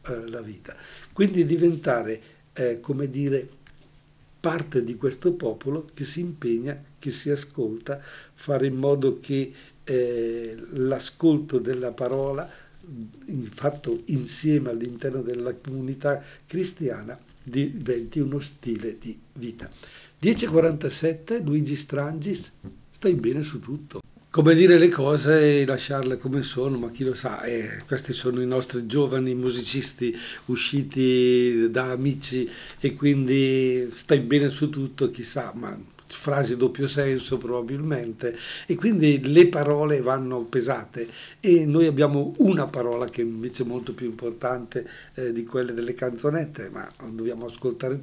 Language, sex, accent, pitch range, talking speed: Italian, male, native, 125-145 Hz, 125 wpm